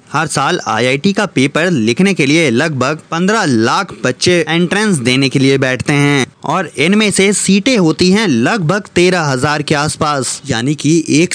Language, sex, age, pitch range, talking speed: Hindi, male, 20-39, 140-185 Hz, 170 wpm